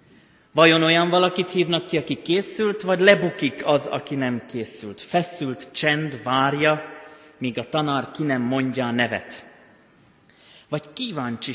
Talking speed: 135 wpm